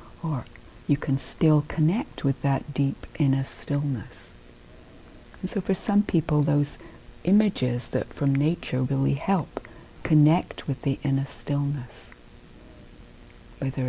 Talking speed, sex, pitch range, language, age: 110 wpm, female, 135-180 Hz, English, 60-79